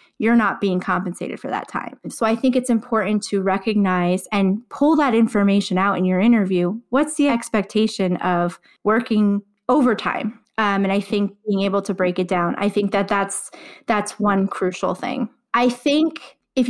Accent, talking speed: American, 175 wpm